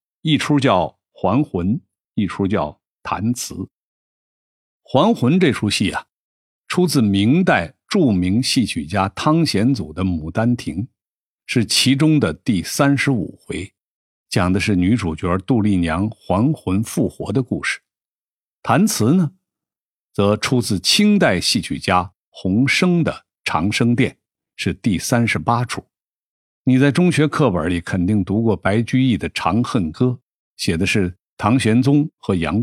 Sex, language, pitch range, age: male, Chinese, 95-135 Hz, 50-69